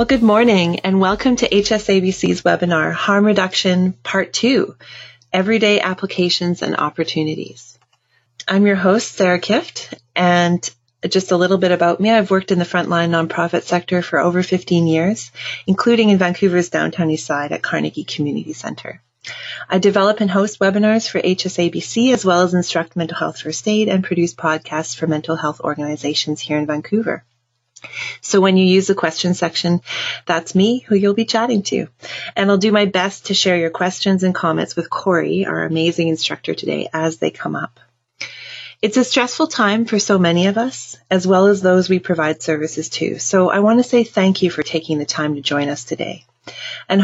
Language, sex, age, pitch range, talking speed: English, female, 30-49, 165-195 Hz, 180 wpm